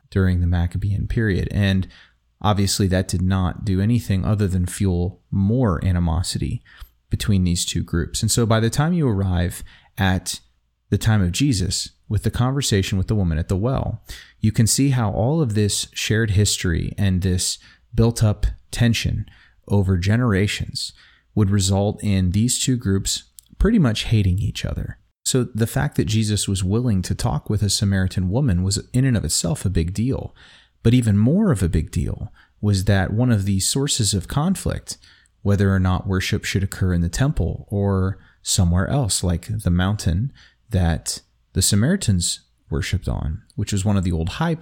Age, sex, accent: 30-49, male, American